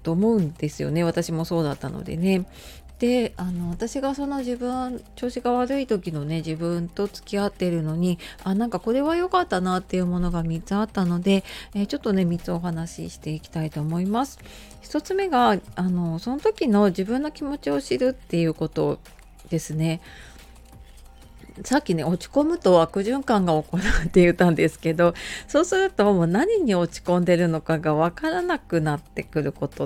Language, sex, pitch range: Japanese, female, 165-245 Hz